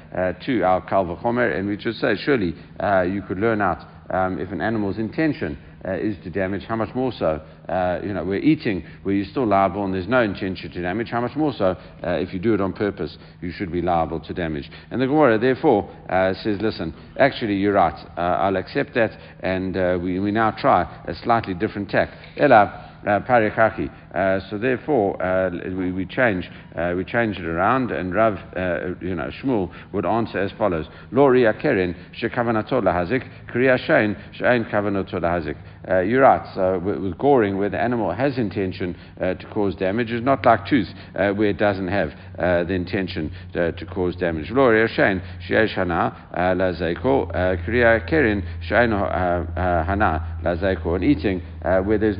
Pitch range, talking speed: 90-110 Hz, 165 wpm